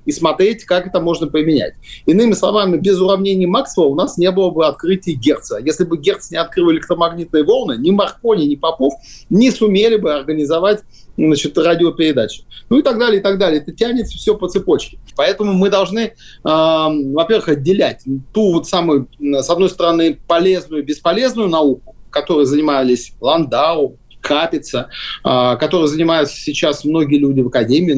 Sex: male